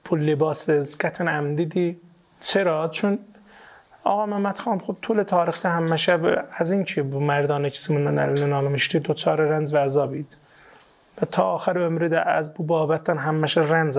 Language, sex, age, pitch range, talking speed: Persian, male, 30-49, 145-175 Hz, 165 wpm